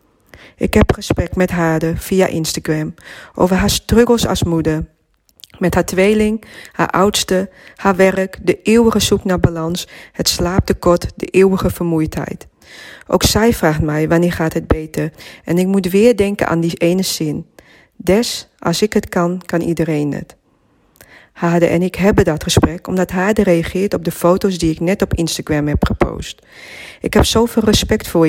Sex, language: female, Dutch